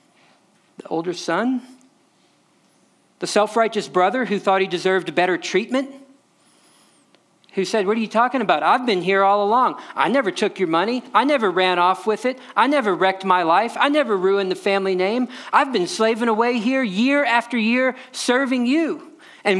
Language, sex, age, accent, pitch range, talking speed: English, male, 40-59, American, 180-260 Hz, 170 wpm